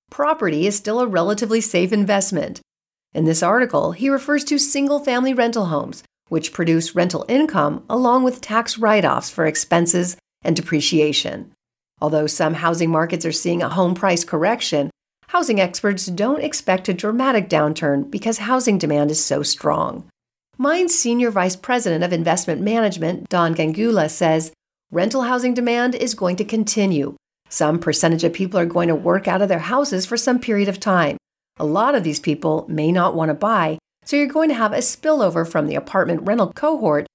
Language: English